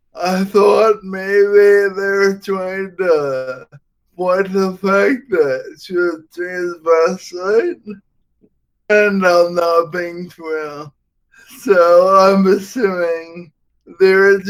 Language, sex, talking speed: English, male, 105 wpm